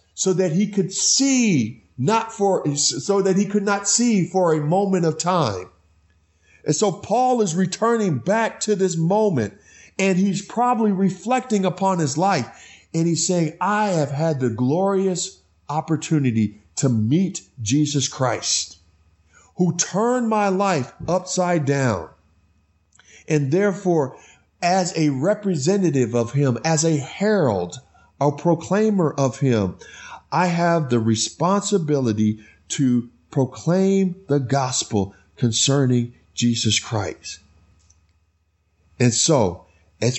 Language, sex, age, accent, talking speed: English, male, 50-69, American, 120 wpm